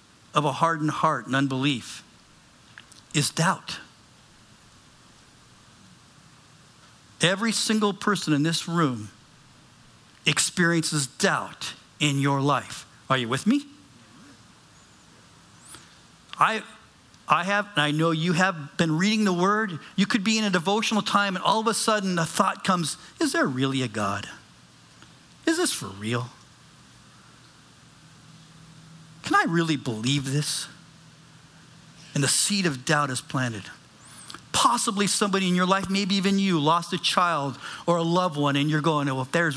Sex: male